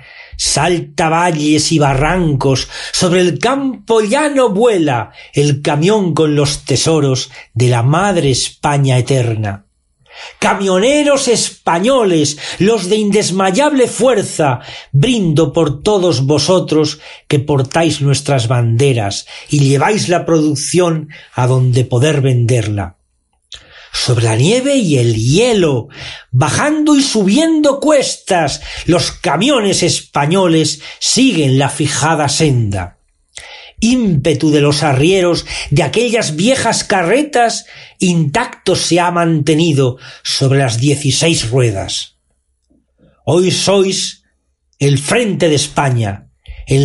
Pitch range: 135-185 Hz